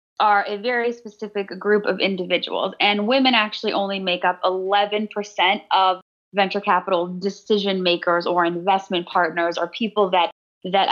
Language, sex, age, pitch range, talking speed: English, female, 20-39, 180-215 Hz, 145 wpm